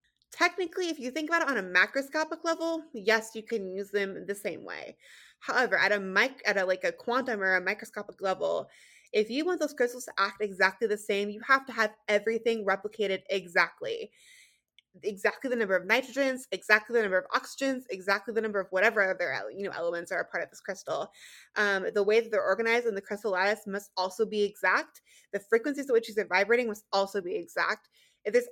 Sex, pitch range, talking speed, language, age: female, 195-245 Hz, 210 wpm, English, 20-39